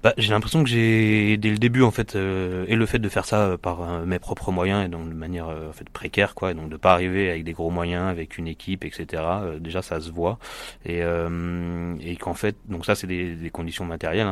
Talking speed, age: 260 wpm, 30-49